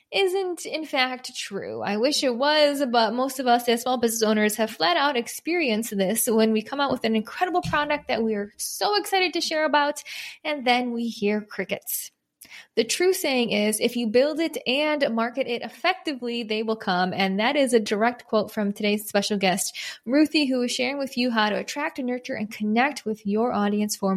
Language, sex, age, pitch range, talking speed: English, female, 10-29, 215-275 Hz, 205 wpm